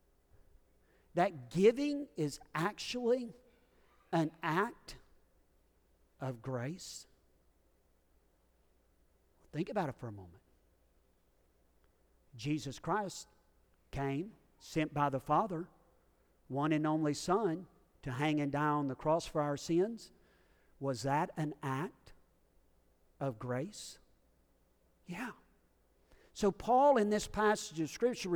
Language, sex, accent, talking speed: English, male, American, 105 wpm